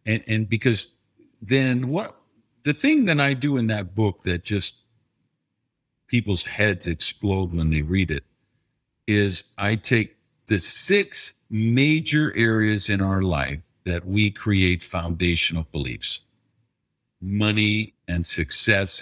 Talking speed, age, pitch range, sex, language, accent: 125 wpm, 50-69, 90-120 Hz, male, English, American